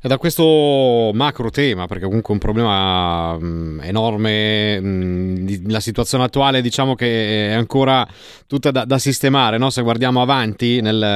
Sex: male